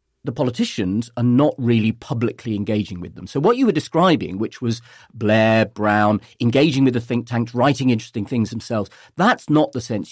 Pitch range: 105-130 Hz